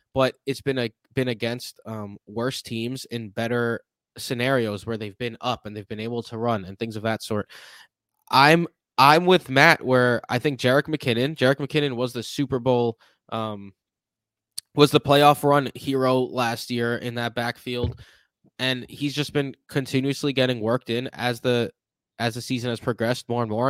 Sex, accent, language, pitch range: male, American, English, 115-140 Hz